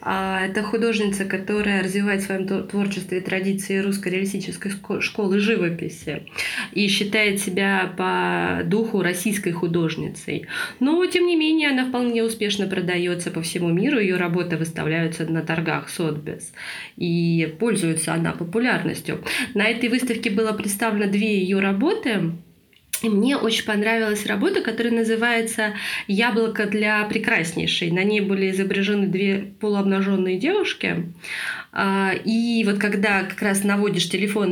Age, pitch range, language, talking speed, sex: 20-39, 180-215 Hz, Russian, 125 wpm, female